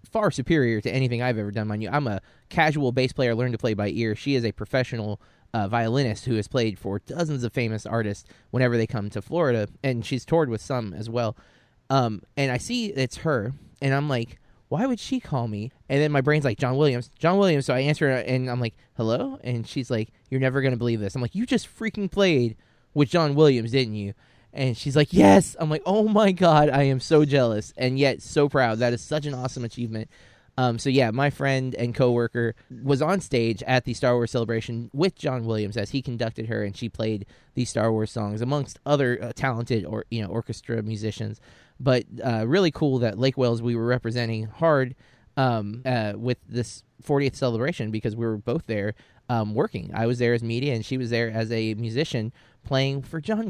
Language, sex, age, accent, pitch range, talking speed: English, male, 20-39, American, 115-135 Hz, 220 wpm